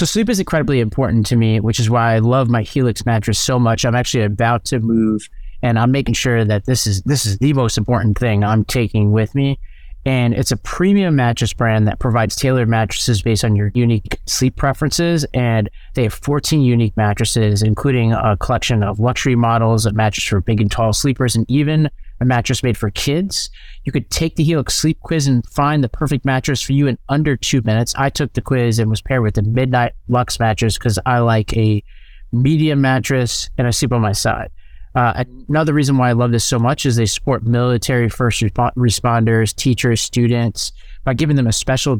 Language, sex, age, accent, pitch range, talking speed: English, male, 30-49, American, 110-135 Hz, 210 wpm